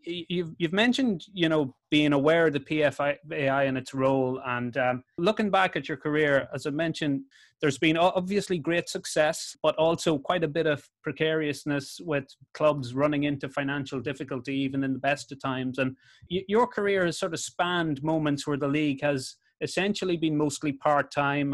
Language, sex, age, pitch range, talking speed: English, male, 30-49, 135-165 Hz, 180 wpm